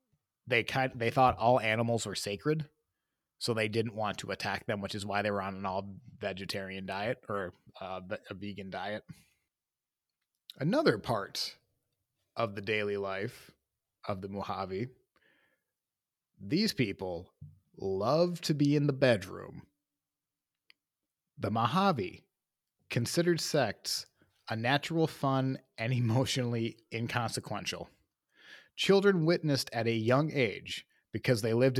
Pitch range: 105-140 Hz